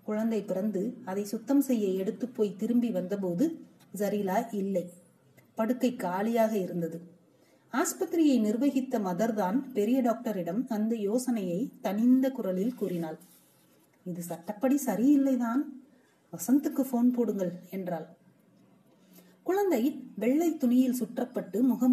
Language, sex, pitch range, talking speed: Tamil, female, 190-255 Hz, 100 wpm